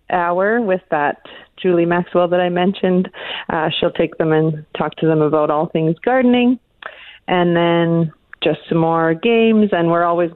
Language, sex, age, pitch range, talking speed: English, female, 30-49, 165-190 Hz, 170 wpm